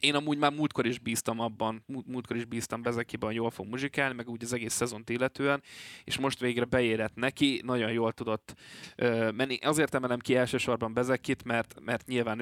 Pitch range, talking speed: 110-130 Hz, 190 wpm